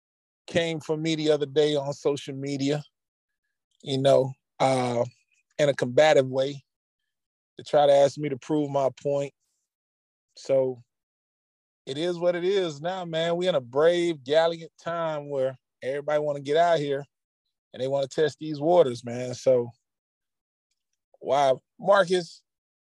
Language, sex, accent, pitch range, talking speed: English, male, American, 130-165 Hz, 145 wpm